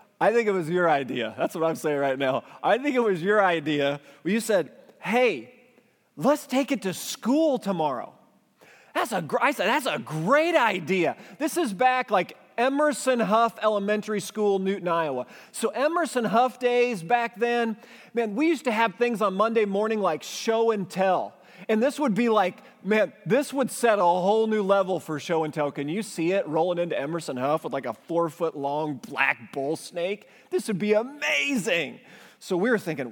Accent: American